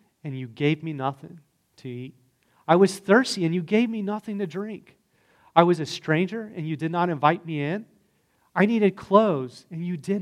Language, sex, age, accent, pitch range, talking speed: English, male, 40-59, American, 130-175 Hz, 200 wpm